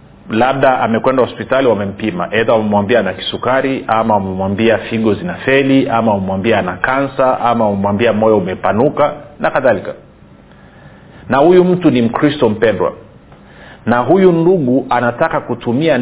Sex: male